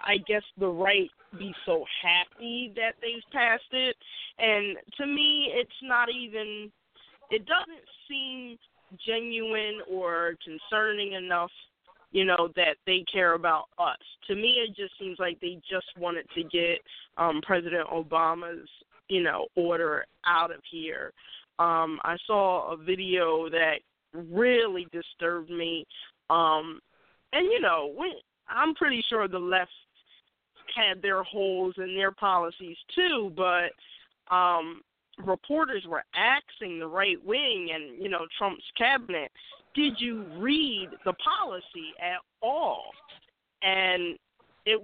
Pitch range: 175-235 Hz